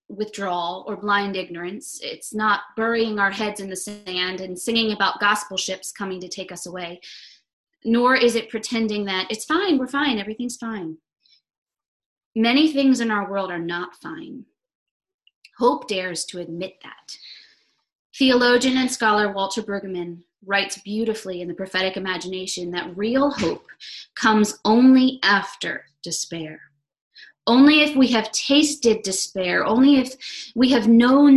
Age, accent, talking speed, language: 20-39, American, 145 wpm, English